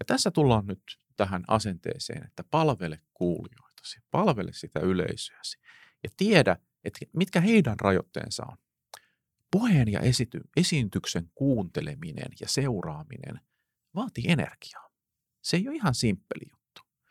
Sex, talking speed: male, 110 wpm